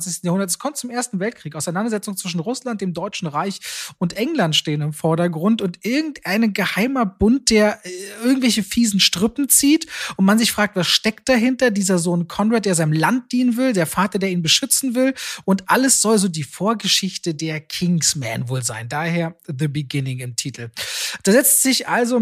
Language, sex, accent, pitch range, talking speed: German, male, German, 175-230 Hz, 180 wpm